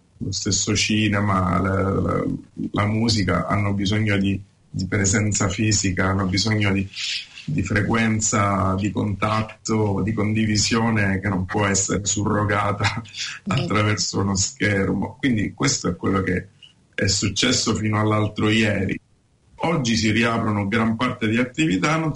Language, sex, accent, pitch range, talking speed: Italian, male, native, 100-115 Hz, 125 wpm